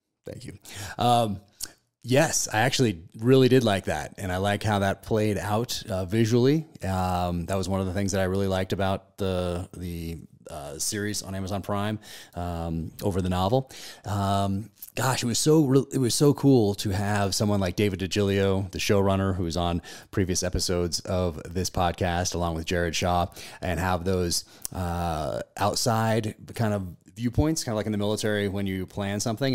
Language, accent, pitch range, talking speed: English, American, 85-105 Hz, 180 wpm